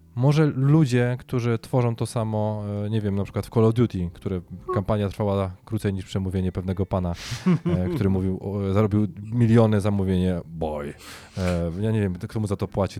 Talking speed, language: 170 wpm, Polish